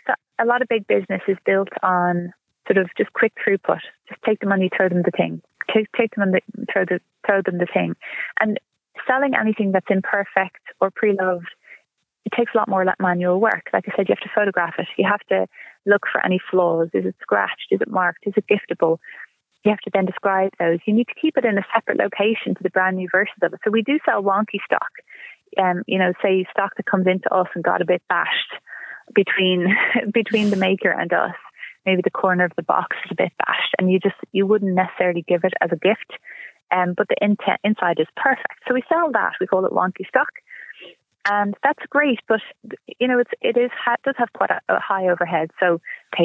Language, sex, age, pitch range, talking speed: English, female, 20-39, 180-215 Hz, 225 wpm